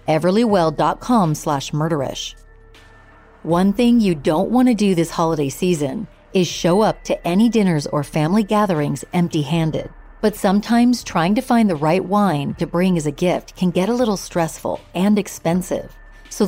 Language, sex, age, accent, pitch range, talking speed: English, female, 40-59, American, 160-210 Hz, 160 wpm